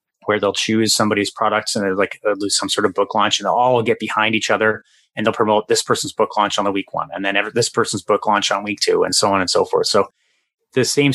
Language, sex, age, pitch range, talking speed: English, male, 30-49, 100-125 Hz, 280 wpm